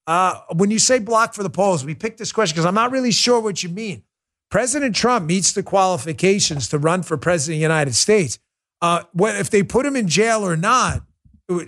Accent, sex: American, male